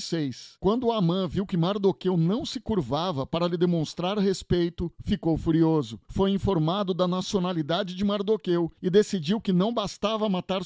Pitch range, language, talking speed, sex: 160-205 Hz, Portuguese, 145 wpm, male